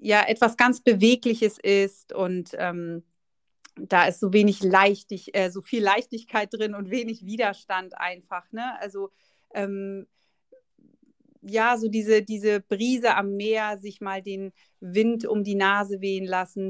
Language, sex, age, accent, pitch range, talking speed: German, female, 30-49, German, 190-230 Hz, 140 wpm